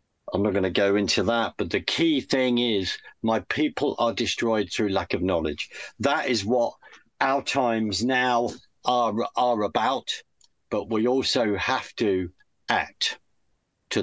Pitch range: 95-125 Hz